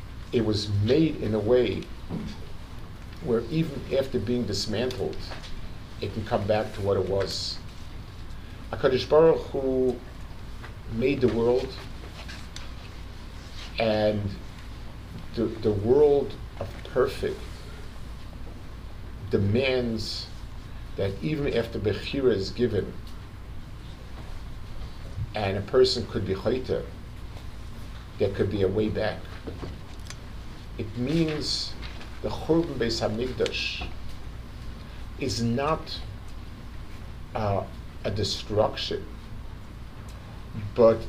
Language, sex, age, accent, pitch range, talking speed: English, male, 50-69, American, 95-115 Hz, 90 wpm